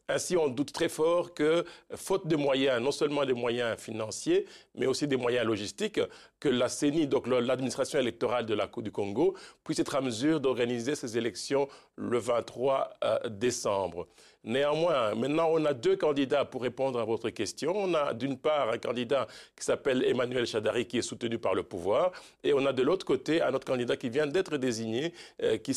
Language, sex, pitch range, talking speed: French, male, 135-190 Hz, 190 wpm